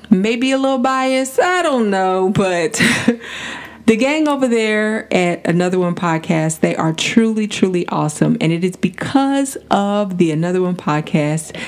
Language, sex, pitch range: English, female, 165-230 Hz